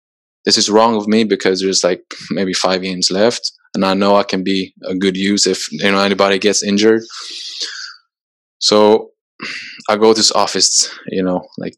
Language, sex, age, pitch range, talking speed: English, male, 20-39, 95-115 Hz, 185 wpm